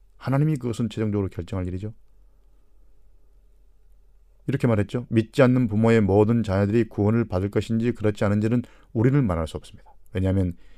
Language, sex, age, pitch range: Korean, male, 40-59, 95-125 Hz